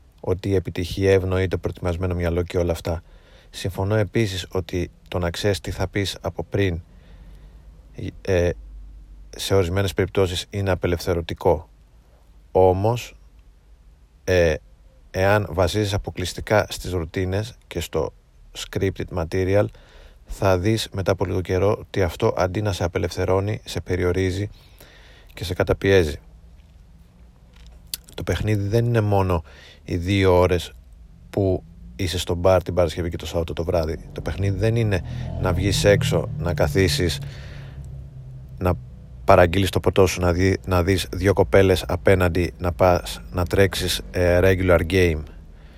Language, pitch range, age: Greek, 85-95 Hz, 30-49